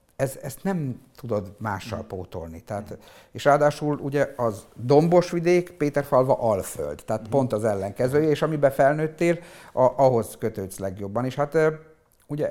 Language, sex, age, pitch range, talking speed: Hungarian, male, 50-69, 105-145 Hz, 145 wpm